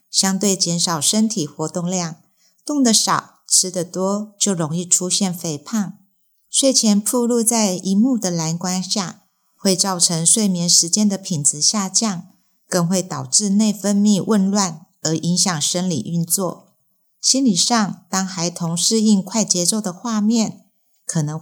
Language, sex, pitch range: Chinese, female, 175-210 Hz